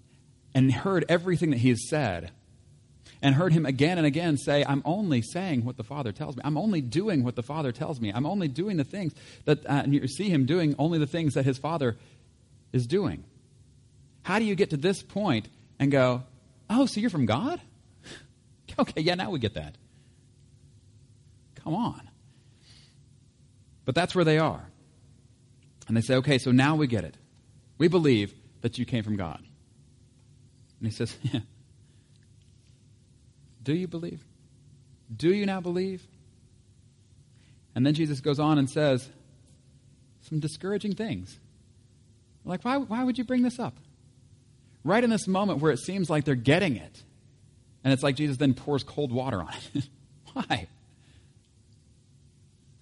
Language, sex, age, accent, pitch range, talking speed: English, male, 40-59, American, 125-150 Hz, 160 wpm